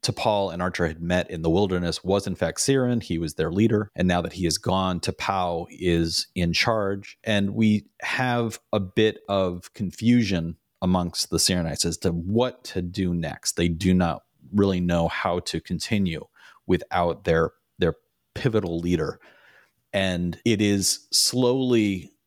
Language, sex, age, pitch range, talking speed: English, male, 30-49, 85-105 Hz, 160 wpm